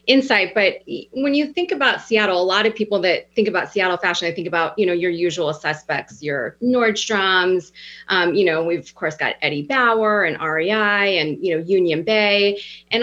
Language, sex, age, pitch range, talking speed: English, female, 30-49, 170-210 Hz, 200 wpm